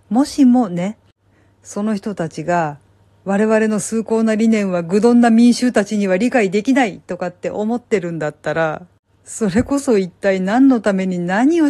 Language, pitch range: Japanese, 165-210 Hz